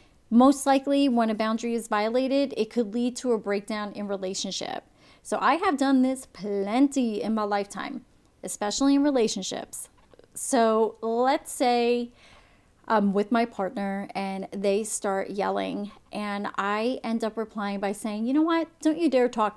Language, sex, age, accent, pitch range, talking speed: English, female, 30-49, American, 210-255 Hz, 160 wpm